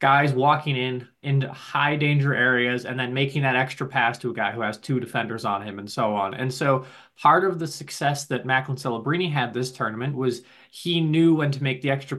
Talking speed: 220 wpm